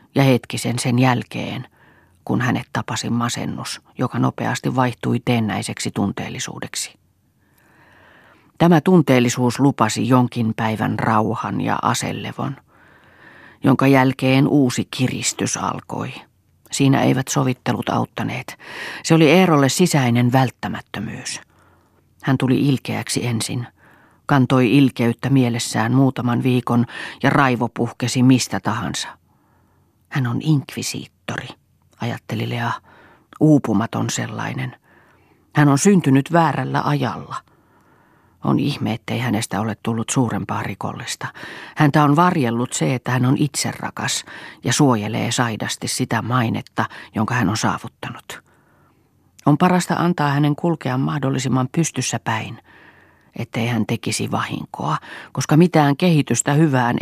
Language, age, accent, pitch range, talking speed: Finnish, 40-59, native, 115-140 Hz, 105 wpm